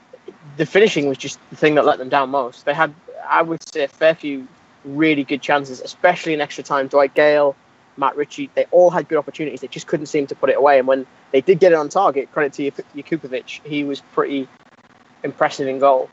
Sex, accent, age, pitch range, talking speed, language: male, British, 20-39, 140-175 Hz, 225 wpm, English